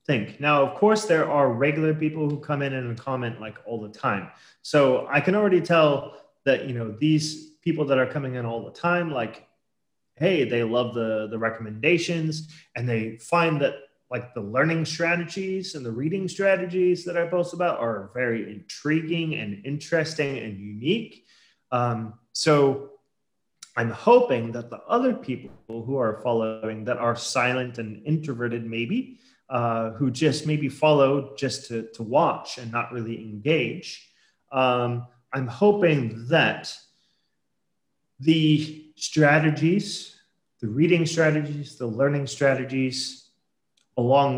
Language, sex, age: English, male, 30-49